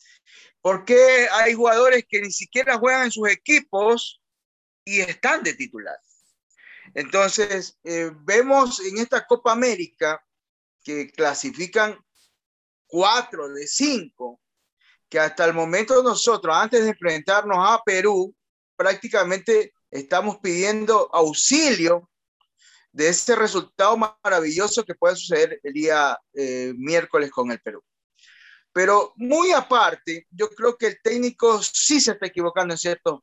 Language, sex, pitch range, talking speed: Spanish, male, 180-250 Hz, 125 wpm